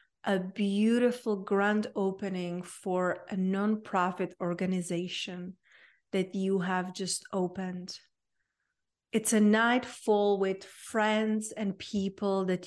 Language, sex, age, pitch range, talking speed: English, female, 30-49, 190-220 Hz, 105 wpm